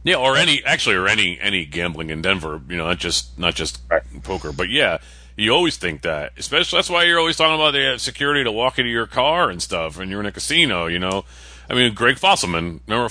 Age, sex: 30-49, male